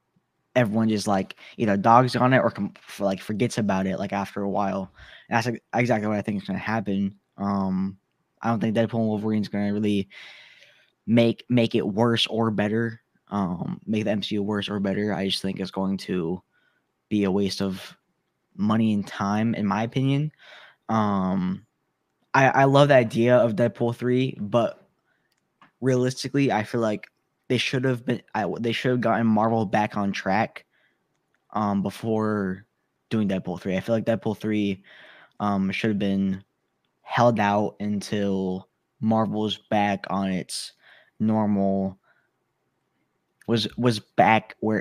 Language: English